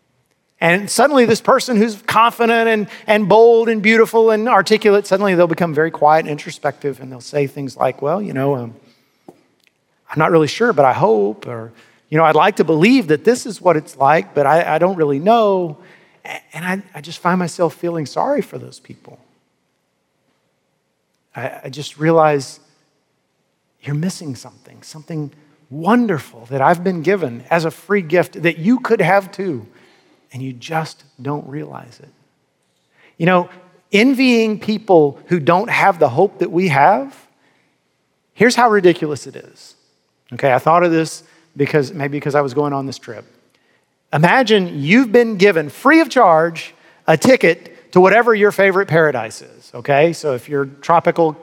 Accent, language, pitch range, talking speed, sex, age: American, English, 145-200 Hz, 170 wpm, male, 40-59